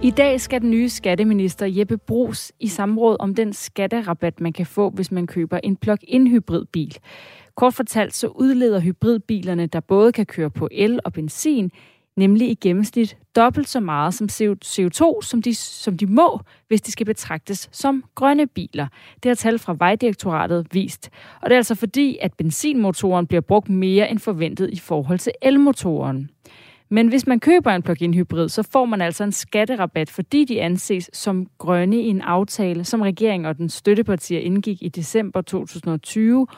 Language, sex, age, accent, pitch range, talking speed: Danish, female, 30-49, native, 175-230 Hz, 175 wpm